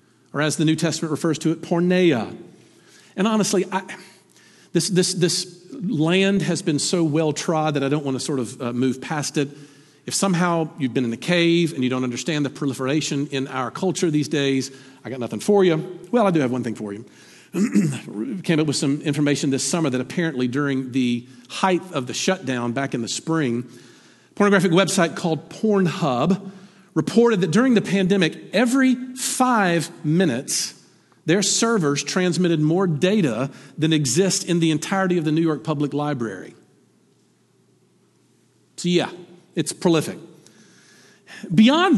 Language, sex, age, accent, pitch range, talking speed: English, male, 50-69, American, 140-185 Hz, 165 wpm